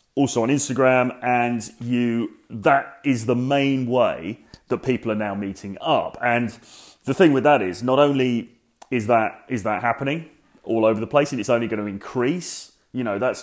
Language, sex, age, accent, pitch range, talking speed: English, male, 30-49, British, 115-135 Hz, 190 wpm